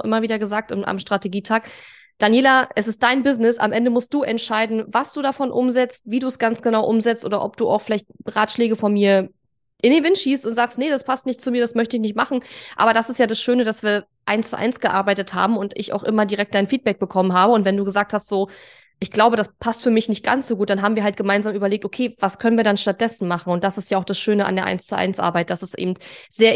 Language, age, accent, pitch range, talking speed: German, 20-39, German, 195-235 Hz, 270 wpm